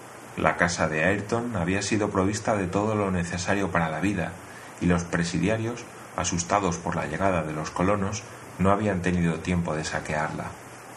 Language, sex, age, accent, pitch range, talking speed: Spanish, male, 30-49, Spanish, 85-105 Hz, 165 wpm